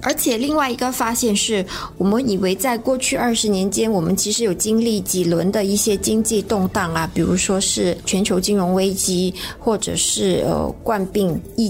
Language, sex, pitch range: Chinese, female, 180-225 Hz